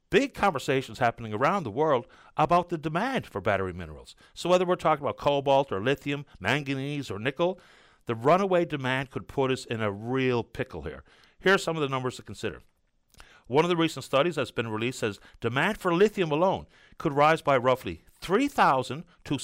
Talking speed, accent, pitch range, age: 190 wpm, American, 120-165 Hz, 50-69